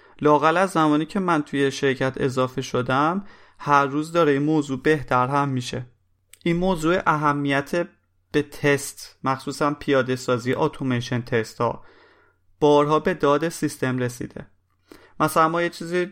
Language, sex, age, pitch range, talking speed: Persian, male, 30-49, 130-155 Hz, 140 wpm